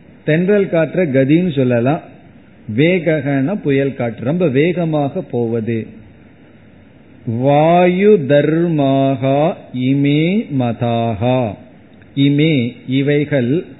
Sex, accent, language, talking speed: male, native, Tamil, 50 wpm